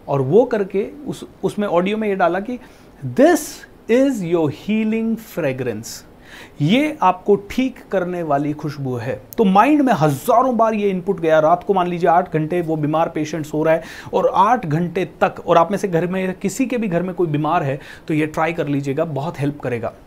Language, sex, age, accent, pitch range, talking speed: Hindi, male, 30-49, native, 155-220 Hz, 205 wpm